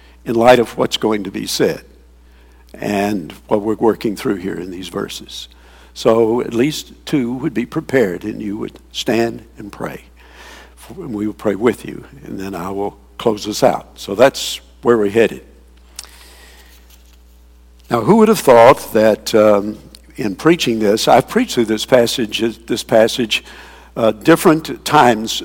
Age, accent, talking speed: 60-79, American, 160 wpm